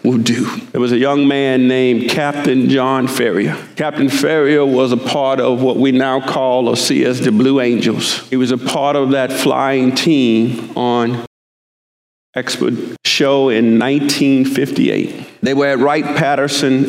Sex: male